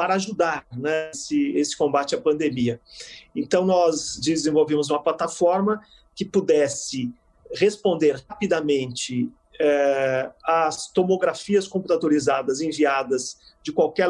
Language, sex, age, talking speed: Portuguese, male, 40-59, 100 wpm